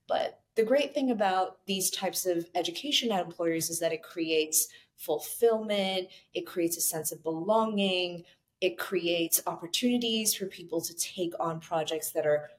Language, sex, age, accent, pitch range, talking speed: English, female, 30-49, American, 165-215 Hz, 155 wpm